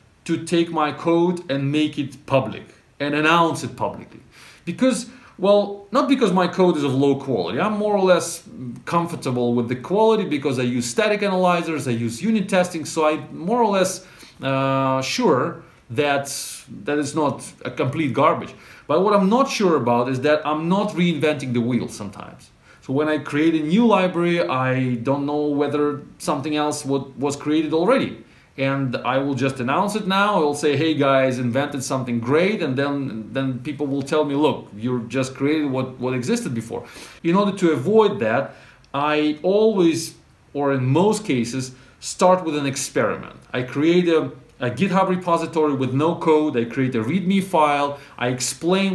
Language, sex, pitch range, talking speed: English, male, 130-175 Hz, 175 wpm